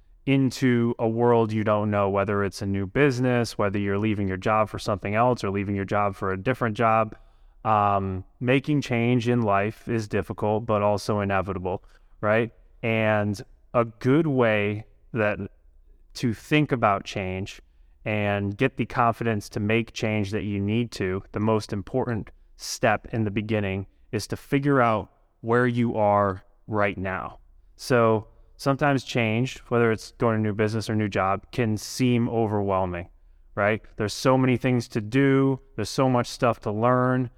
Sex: male